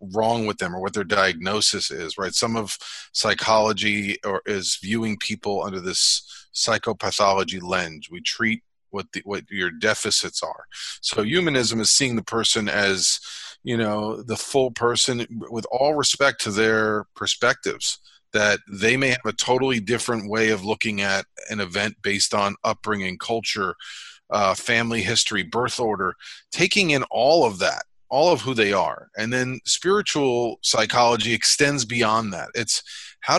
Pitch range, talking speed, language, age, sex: 105-120 Hz, 155 wpm, English, 40-59, male